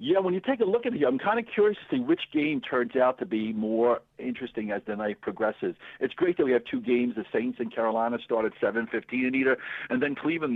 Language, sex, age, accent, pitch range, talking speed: English, male, 60-79, American, 110-145 Hz, 255 wpm